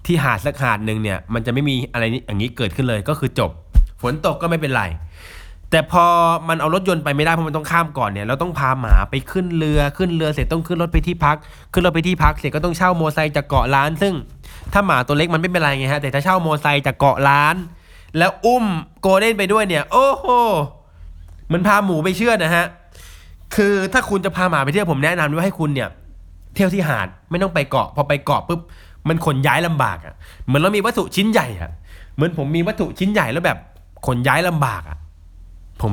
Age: 20-39